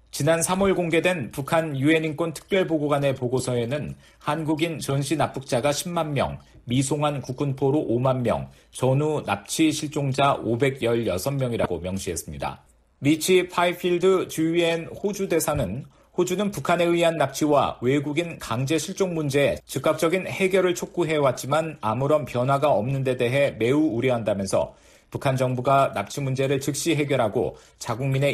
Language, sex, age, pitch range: Korean, male, 40-59, 135-165 Hz